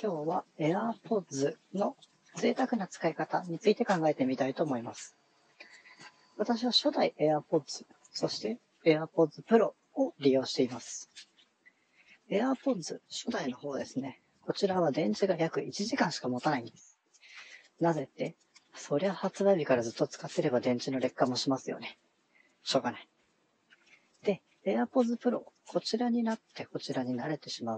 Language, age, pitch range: Japanese, 40-59, 135-200 Hz